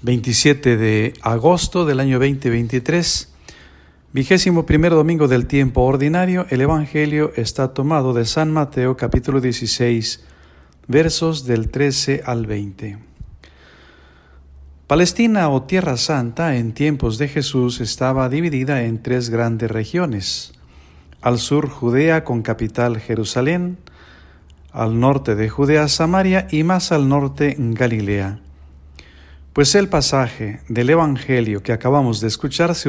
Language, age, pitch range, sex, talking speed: Spanish, 50-69, 95-140 Hz, male, 120 wpm